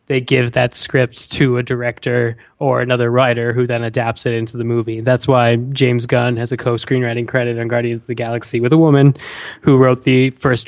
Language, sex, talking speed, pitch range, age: English, male, 210 wpm, 120-140 Hz, 20-39